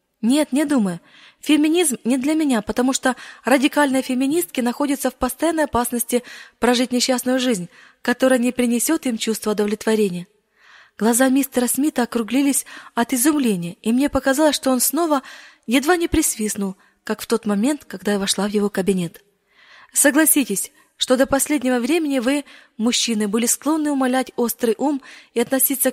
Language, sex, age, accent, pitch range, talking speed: Russian, female, 20-39, native, 220-275 Hz, 145 wpm